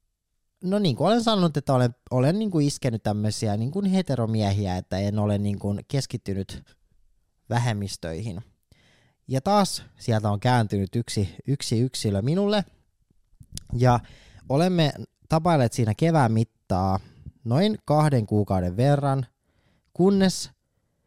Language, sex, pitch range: Finnish, male, 110-155 Hz